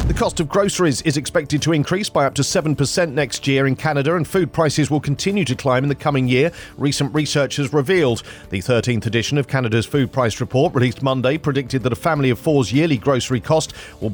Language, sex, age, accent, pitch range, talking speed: English, male, 40-59, British, 125-155 Hz, 215 wpm